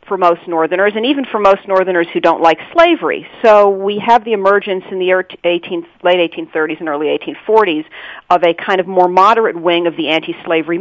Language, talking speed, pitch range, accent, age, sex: English, 190 wpm, 165-205 Hz, American, 40-59, female